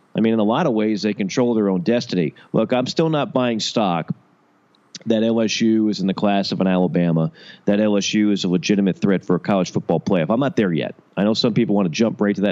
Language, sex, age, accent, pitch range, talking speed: English, male, 40-59, American, 95-125 Hz, 250 wpm